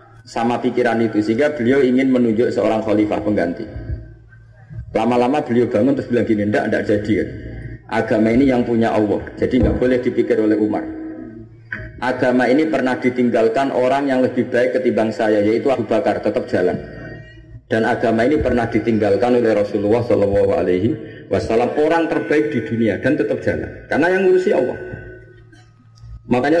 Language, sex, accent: Indonesian, male, native